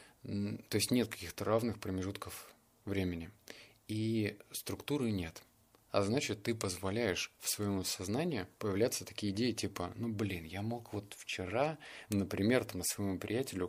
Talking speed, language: 130 wpm, Russian